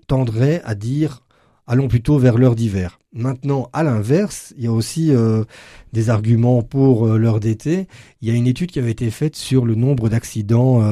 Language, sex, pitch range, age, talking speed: French, male, 105-125 Hz, 40-59, 190 wpm